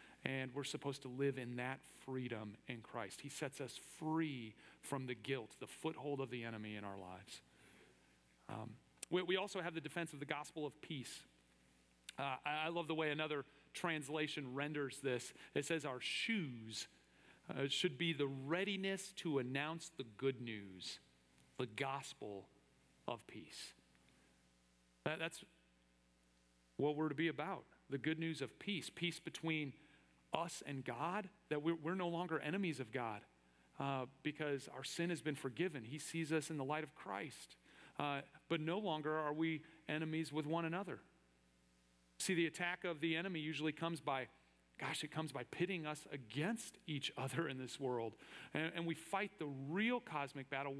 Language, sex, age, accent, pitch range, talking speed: English, male, 40-59, American, 105-160 Hz, 170 wpm